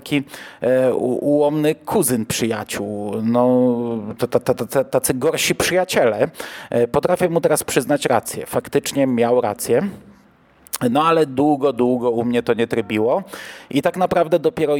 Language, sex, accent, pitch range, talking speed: Polish, male, native, 120-145 Hz, 135 wpm